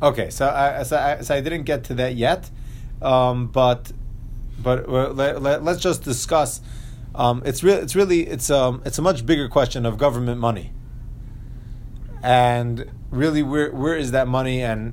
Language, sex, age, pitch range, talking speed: English, male, 30-49, 115-140 Hz, 175 wpm